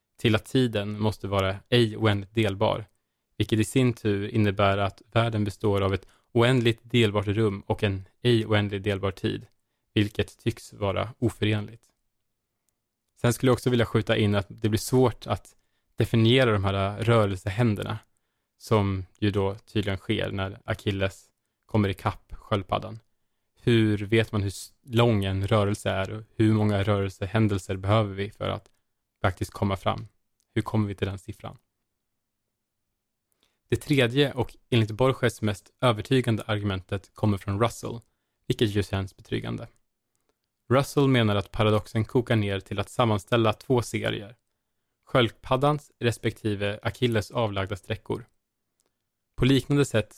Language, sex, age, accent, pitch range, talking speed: Swedish, male, 20-39, Norwegian, 100-115 Hz, 140 wpm